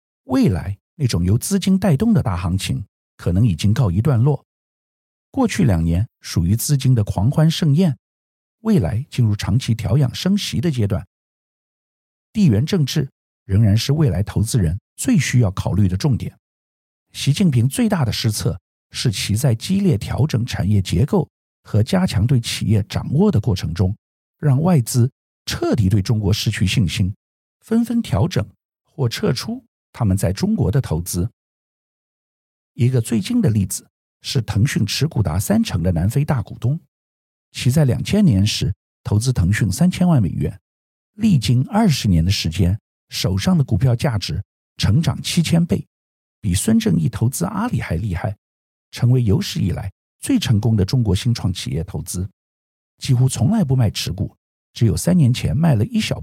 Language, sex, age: Chinese, male, 50-69